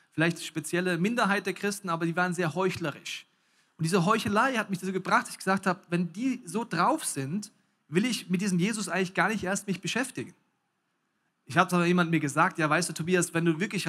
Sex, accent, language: male, German, German